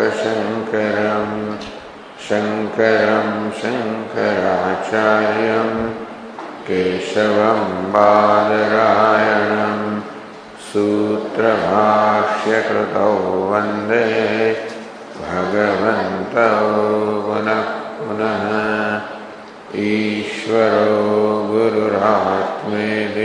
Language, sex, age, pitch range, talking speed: English, male, 50-69, 105-110 Hz, 35 wpm